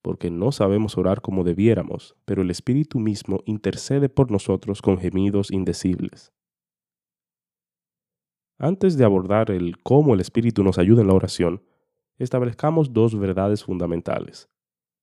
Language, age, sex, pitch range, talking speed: Spanish, 30-49, male, 95-125 Hz, 130 wpm